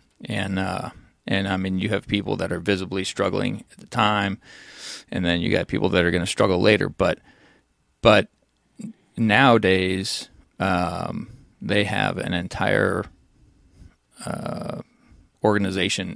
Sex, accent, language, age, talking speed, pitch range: male, American, English, 20-39, 135 wpm, 95-105 Hz